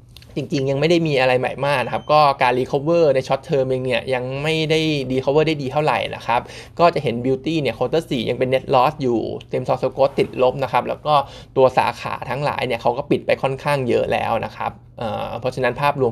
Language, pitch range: Thai, 125-145 Hz